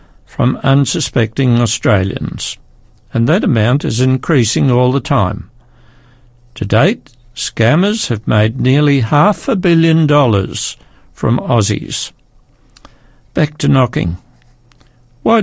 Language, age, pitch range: English, 60-79, 115-145 Hz